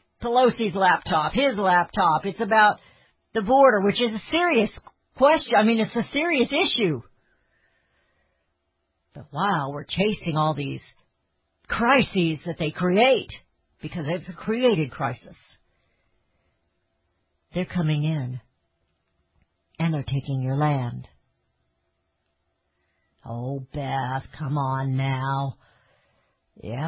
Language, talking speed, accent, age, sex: English, 105 wpm, American, 50-69, female